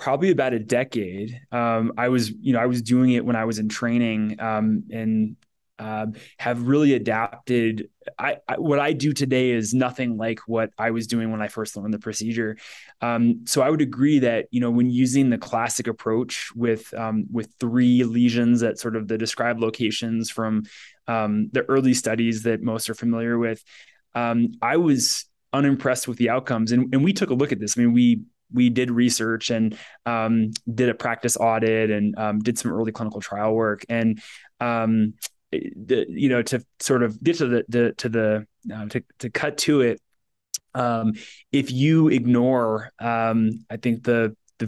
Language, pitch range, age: English, 110-125 Hz, 20-39